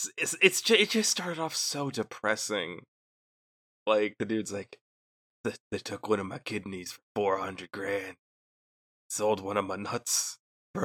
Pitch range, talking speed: 110-150 Hz, 160 wpm